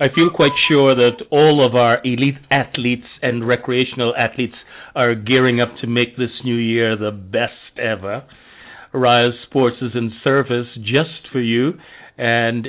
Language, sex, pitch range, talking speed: English, male, 120-155 Hz, 155 wpm